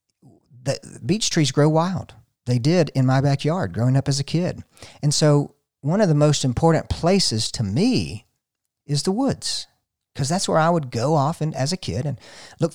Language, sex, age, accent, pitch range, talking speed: English, male, 50-69, American, 120-155 Hz, 195 wpm